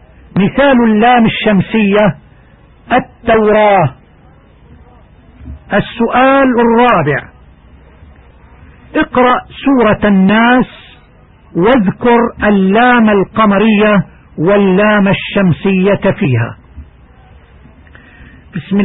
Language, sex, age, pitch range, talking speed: Arabic, male, 50-69, 190-230 Hz, 50 wpm